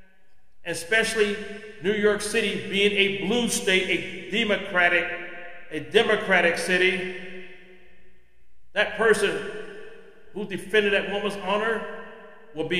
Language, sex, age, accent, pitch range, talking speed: English, male, 40-59, American, 170-220 Hz, 105 wpm